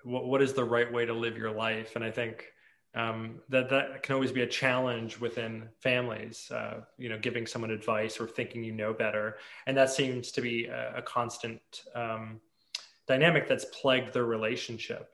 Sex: male